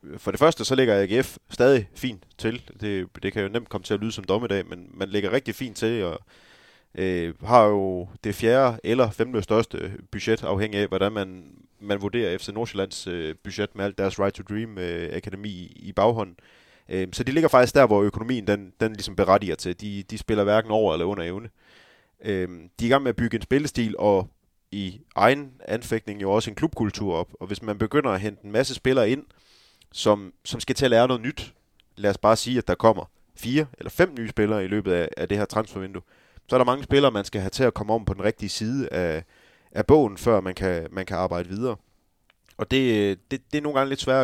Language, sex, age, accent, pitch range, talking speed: Danish, male, 30-49, native, 95-115 Hz, 225 wpm